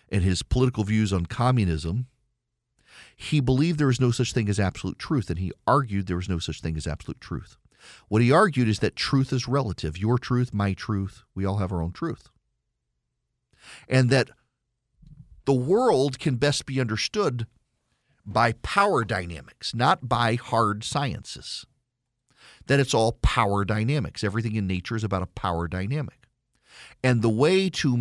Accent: American